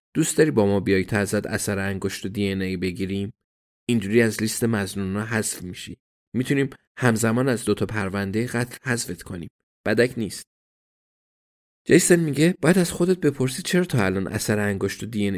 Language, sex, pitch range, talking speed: Persian, male, 95-120 Hz, 170 wpm